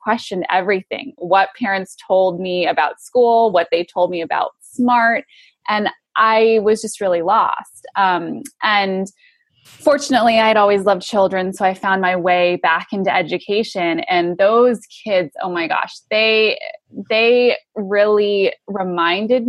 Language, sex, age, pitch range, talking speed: English, female, 20-39, 185-230 Hz, 140 wpm